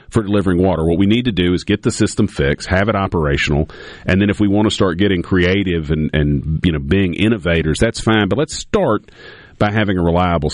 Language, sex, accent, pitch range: English, male, American, 80-100 Hz